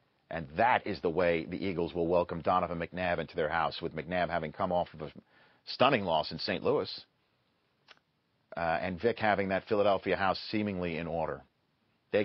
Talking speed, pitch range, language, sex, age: 180 wpm, 85-110 Hz, English, male, 40-59